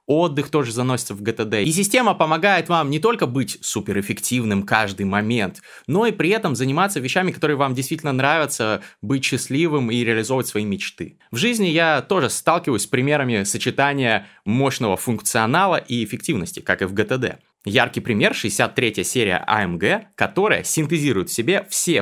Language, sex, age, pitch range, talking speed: Russian, male, 20-39, 110-160 Hz, 155 wpm